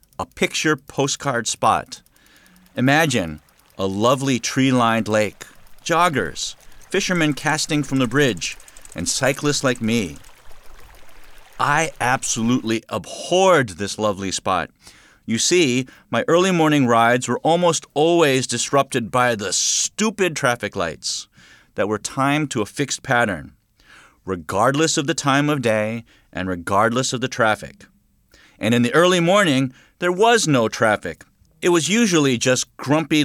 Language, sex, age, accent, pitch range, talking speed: English, male, 40-59, American, 110-150 Hz, 130 wpm